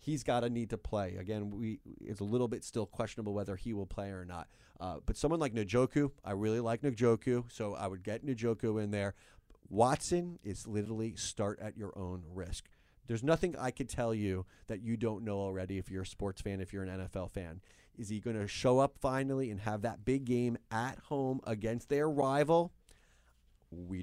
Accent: American